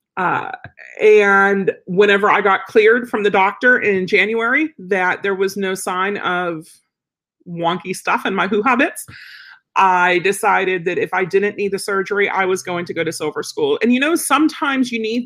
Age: 40-59